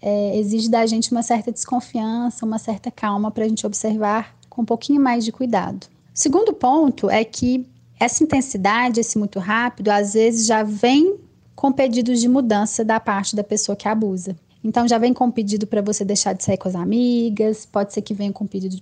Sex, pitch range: female, 210-255 Hz